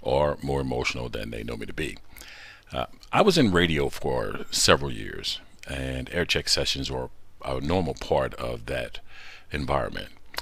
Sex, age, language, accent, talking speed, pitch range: male, 50-69, English, American, 160 wpm, 70-95 Hz